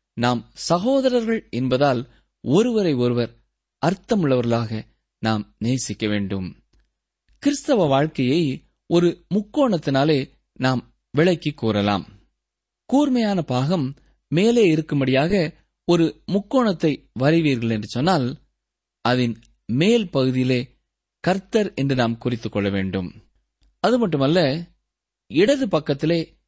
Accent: native